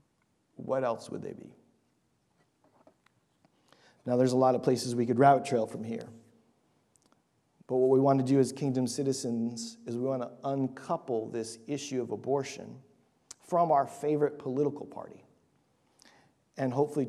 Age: 40-59